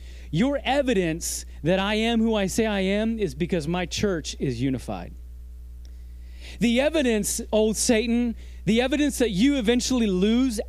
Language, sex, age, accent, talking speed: English, male, 30-49, American, 145 wpm